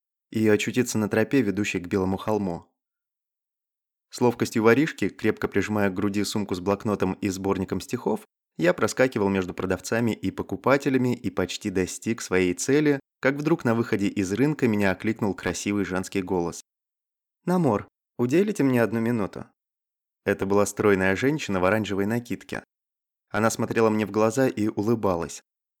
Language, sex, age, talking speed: Russian, male, 20-39, 145 wpm